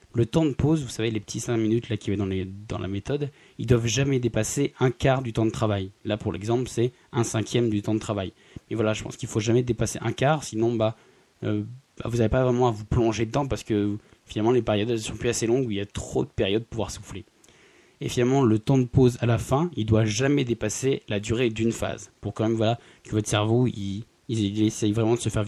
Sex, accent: male, French